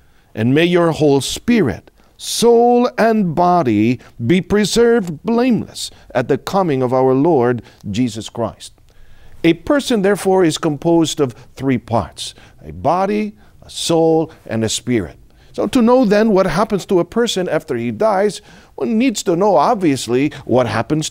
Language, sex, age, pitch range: Filipino, male, 50-69, 125-205 Hz